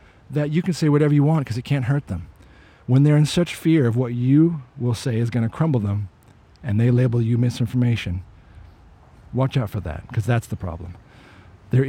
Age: 40-59